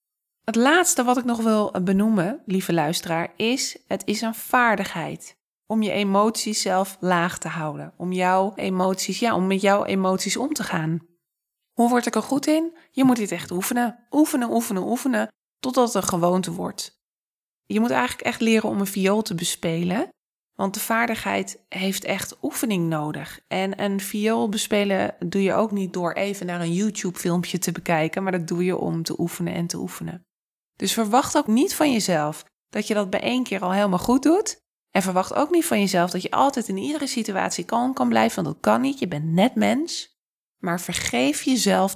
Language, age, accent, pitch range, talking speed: Dutch, 20-39, Dutch, 180-235 Hz, 195 wpm